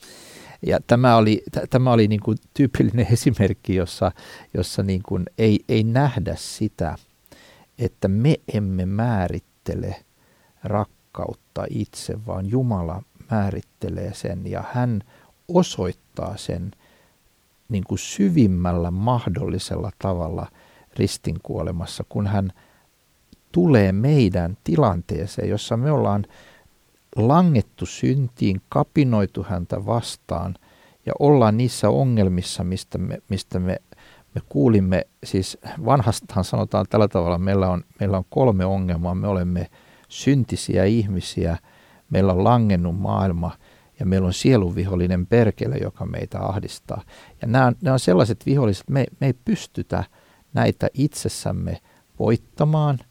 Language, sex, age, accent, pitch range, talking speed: Finnish, male, 50-69, native, 95-125 Hz, 115 wpm